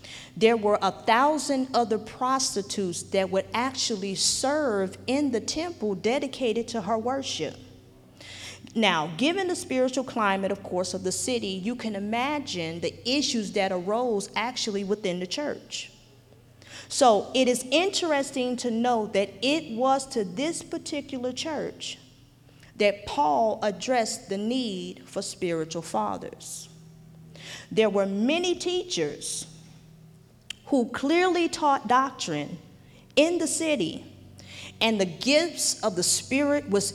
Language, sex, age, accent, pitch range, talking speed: English, female, 40-59, American, 185-260 Hz, 125 wpm